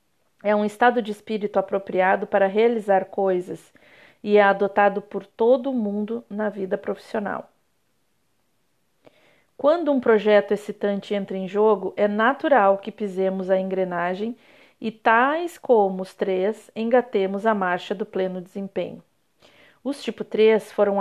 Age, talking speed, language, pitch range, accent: 40-59, 130 wpm, Portuguese, 195-230 Hz, Brazilian